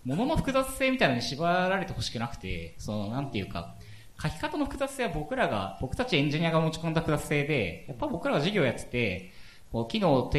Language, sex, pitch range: Japanese, male, 100-165 Hz